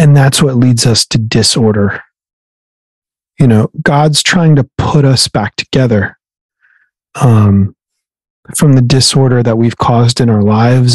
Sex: male